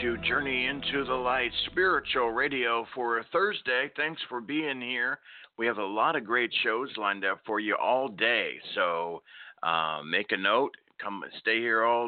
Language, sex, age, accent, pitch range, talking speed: English, male, 50-69, American, 90-120 Hz, 170 wpm